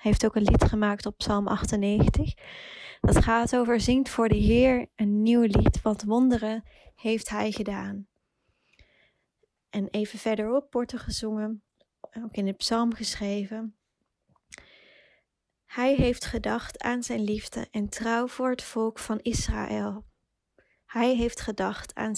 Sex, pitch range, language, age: female, 215-240 Hz, Dutch, 20-39